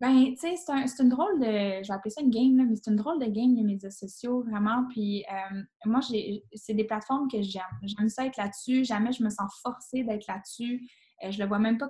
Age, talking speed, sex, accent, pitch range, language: 10-29, 260 wpm, female, Canadian, 200-255 Hz, French